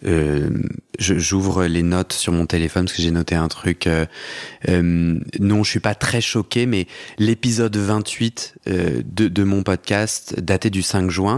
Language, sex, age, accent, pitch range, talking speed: French, male, 30-49, French, 95-115 Hz, 180 wpm